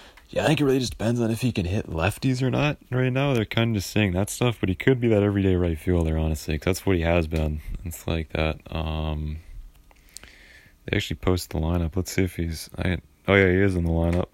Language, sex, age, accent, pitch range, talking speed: English, male, 20-39, American, 80-100 Hz, 250 wpm